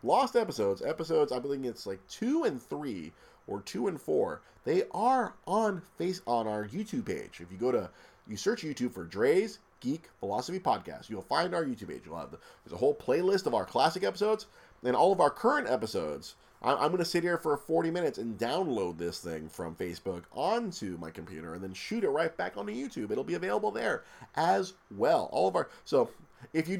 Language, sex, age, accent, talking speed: English, male, 30-49, American, 210 wpm